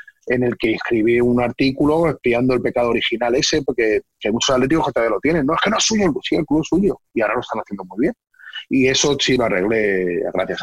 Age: 30-49